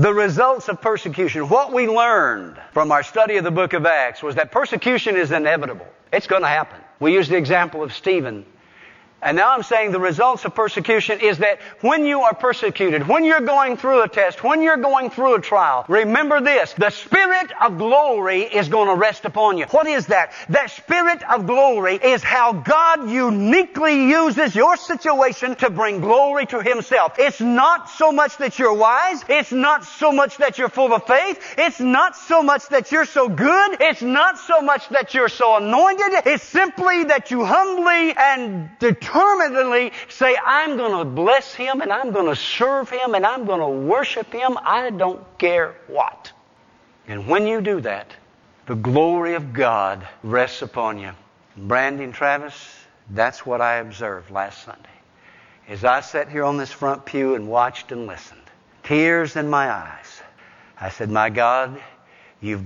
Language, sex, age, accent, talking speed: English, male, 50-69, American, 180 wpm